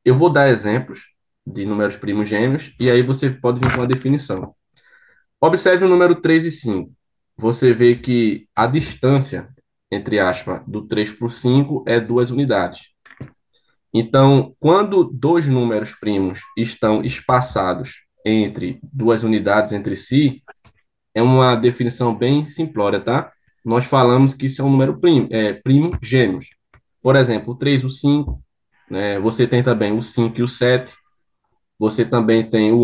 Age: 10-29